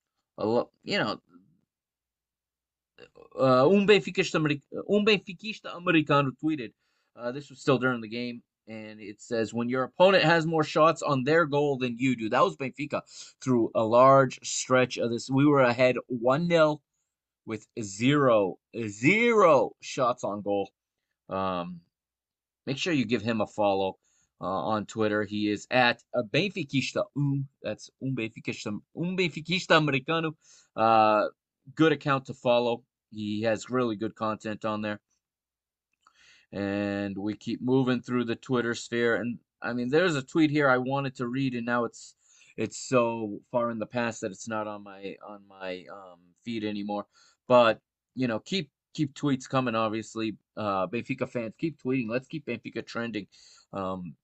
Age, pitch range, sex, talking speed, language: 20-39, 110-140 Hz, male, 150 wpm, English